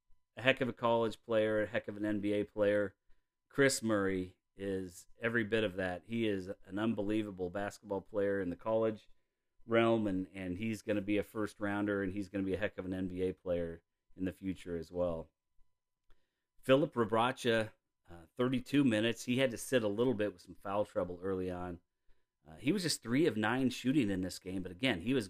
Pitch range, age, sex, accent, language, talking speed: 95-115 Hz, 40-59, male, American, English, 205 wpm